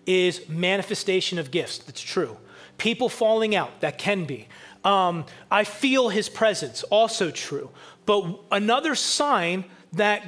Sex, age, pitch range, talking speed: male, 30-49, 160-230 Hz, 135 wpm